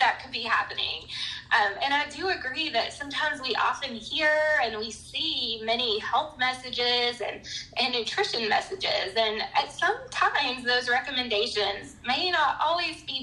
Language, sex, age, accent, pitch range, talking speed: English, female, 10-29, American, 225-315 Hz, 155 wpm